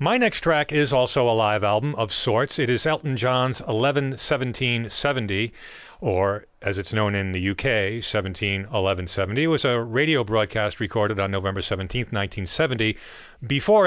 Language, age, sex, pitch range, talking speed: English, 40-59, male, 105-135 Hz, 145 wpm